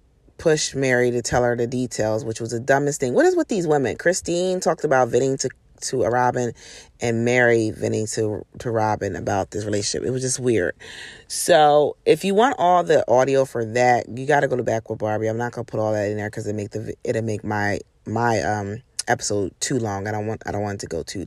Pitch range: 110-145 Hz